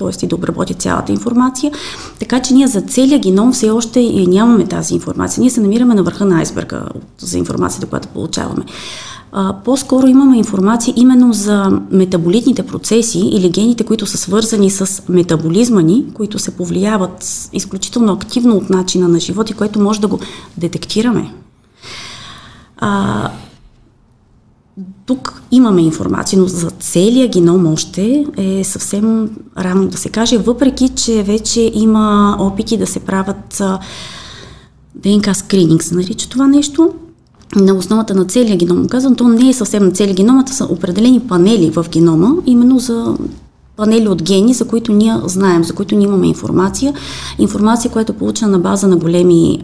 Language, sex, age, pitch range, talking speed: Bulgarian, female, 30-49, 185-240 Hz, 150 wpm